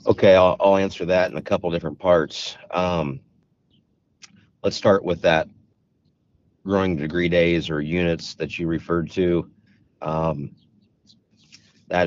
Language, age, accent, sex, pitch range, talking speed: English, 50-69, American, male, 80-100 Hz, 130 wpm